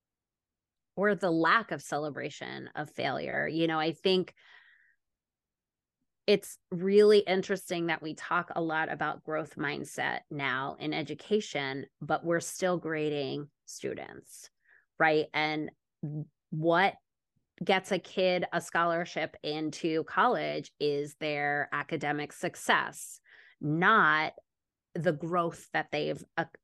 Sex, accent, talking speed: female, American, 110 wpm